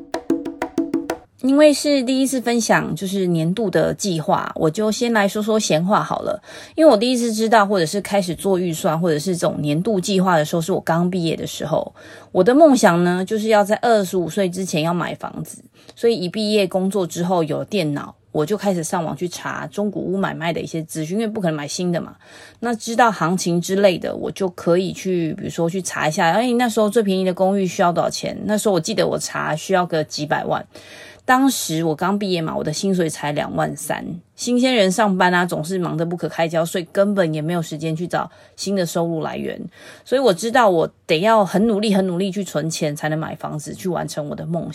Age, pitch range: 30-49, 165-215 Hz